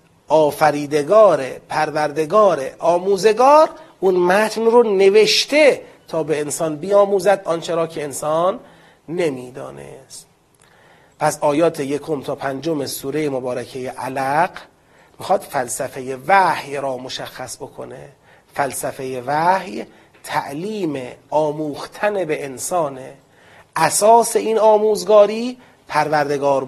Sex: male